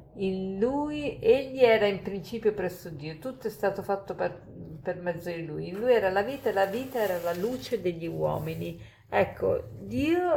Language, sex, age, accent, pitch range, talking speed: Italian, female, 50-69, native, 180-245 Hz, 185 wpm